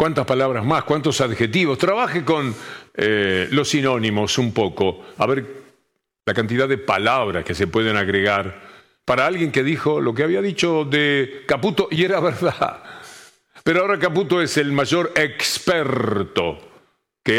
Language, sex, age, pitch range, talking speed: Spanish, male, 50-69, 115-160 Hz, 150 wpm